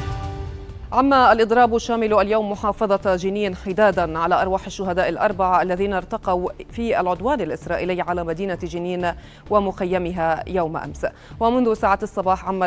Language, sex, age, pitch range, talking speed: Arabic, female, 30-49, 180-220 Hz, 125 wpm